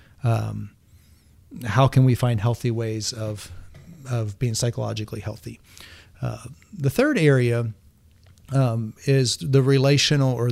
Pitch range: 110-135 Hz